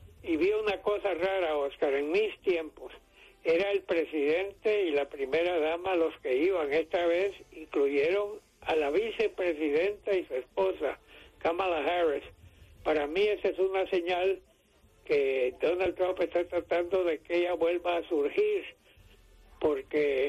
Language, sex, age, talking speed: English, male, 60-79, 140 wpm